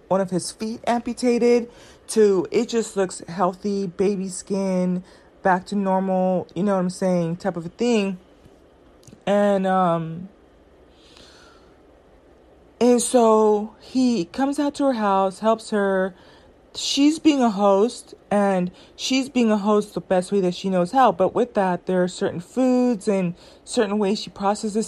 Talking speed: 155 wpm